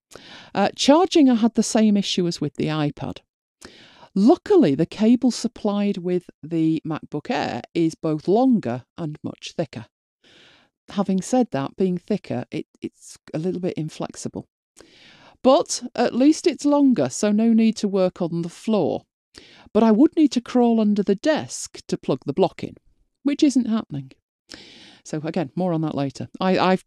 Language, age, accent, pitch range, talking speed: English, 40-59, British, 155-230 Hz, 160 wpm